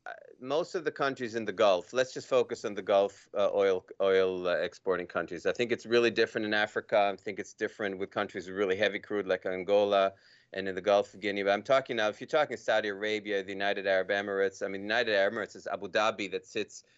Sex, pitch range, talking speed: male, 95-115 Hz, 240 wpm